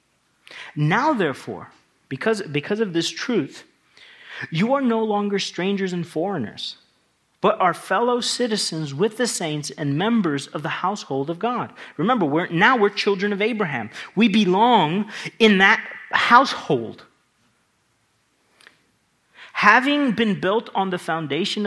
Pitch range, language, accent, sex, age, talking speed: 150-215 Hz, English, American, male, 40-59, 125 wpm